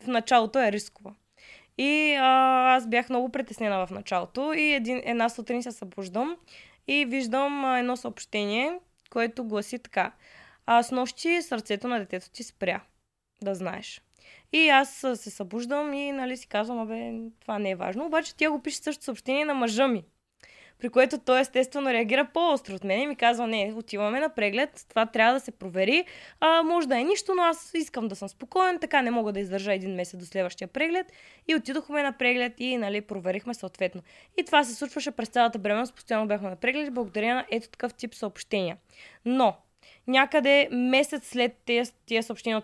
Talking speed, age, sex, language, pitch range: 185 wpm, 20-39, female, Bulgarian, 215-270 Hz